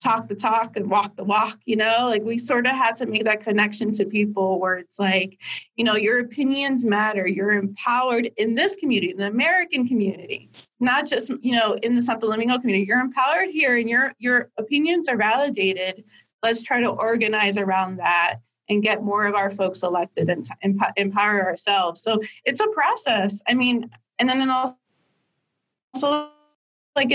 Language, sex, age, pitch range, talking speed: English, female, 20-39, 205-255 Hz, 180 wpm